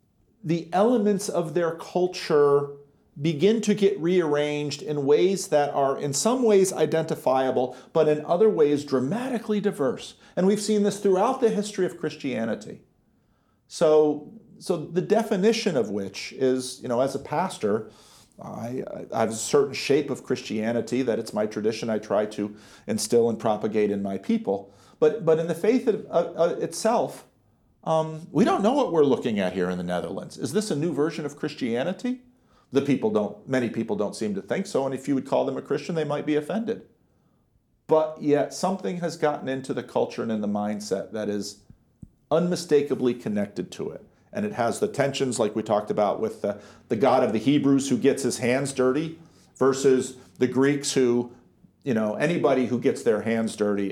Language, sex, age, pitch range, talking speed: Dutch, male, 40-59, 115-175 Hz, 185 wpm